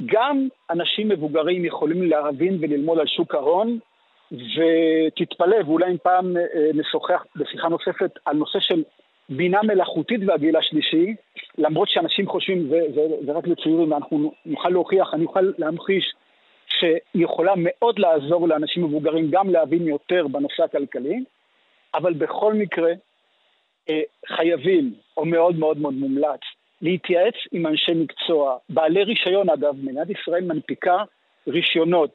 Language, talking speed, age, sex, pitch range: Hebrew, 125 wpm, 50-69, male, 160-210 Hz